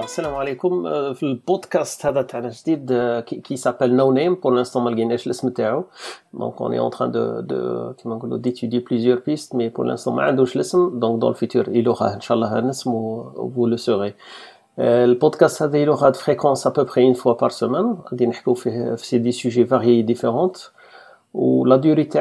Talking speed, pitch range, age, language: 185 wpm, 115-135 Hz, 40-59, Arabic